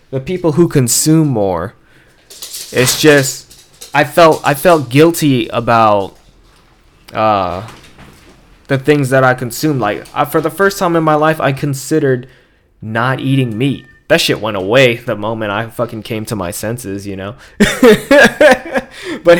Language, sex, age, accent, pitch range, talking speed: English, male, 20-39, American, 100-145 Hz, 150 wpm